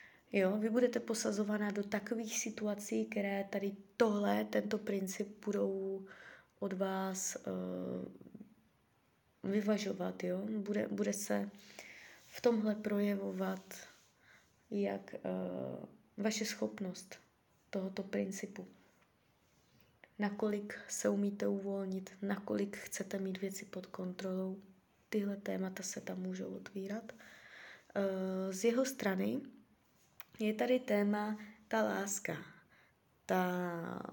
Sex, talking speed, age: female, 100 wpm, 20-39